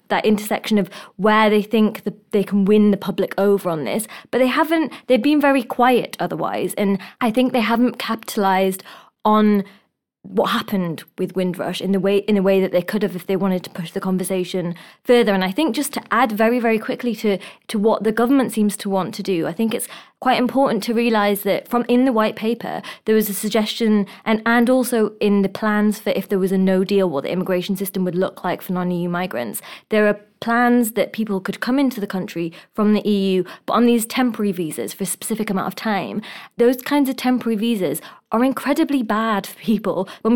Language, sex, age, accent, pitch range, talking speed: English, female, 20-39, British, 190-235 Hz, 215 wpm